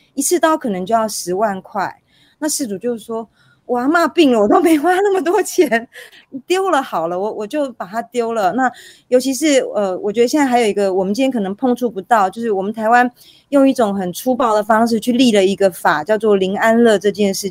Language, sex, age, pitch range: Chinese, female, 30-49, 205-260 Hz